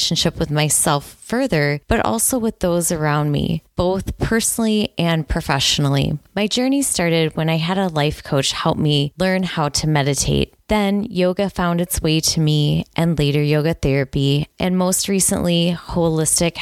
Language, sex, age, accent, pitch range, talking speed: English, female, 20-39, American, 155-190 Hz, 155 wpm